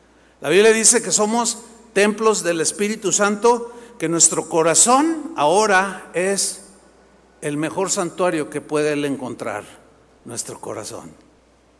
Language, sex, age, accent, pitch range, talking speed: Spanish, male, 50-69, Mexican, 170-235 Hz, 110 wpm